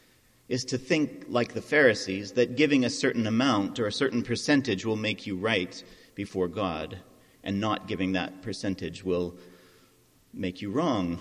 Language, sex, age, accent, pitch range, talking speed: English, male, 40-59, American, 100-145 Hz, 160 wpm